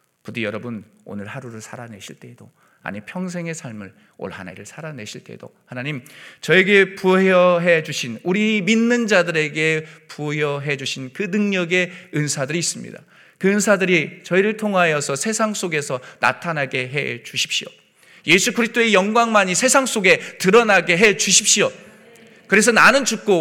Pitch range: 125-195 Hz